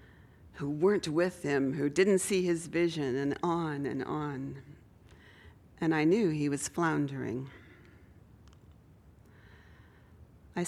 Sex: female